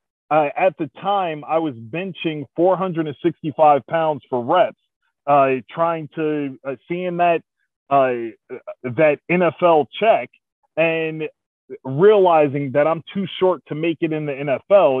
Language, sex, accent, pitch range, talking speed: English, male, American, 135-175 Hz, 135 wpm